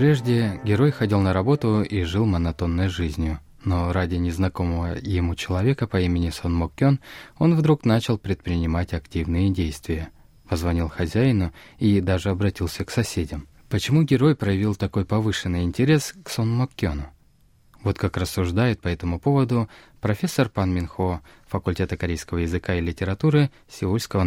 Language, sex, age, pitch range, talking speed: Russian, male, 20-39, 90-125 Hz, 140 wpm